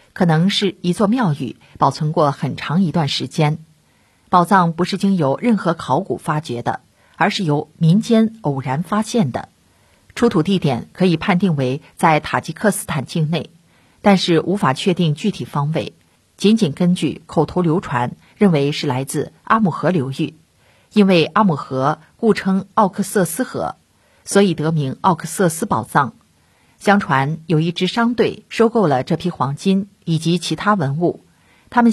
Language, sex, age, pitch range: Chinese, female, 50-69, 150-200 Hz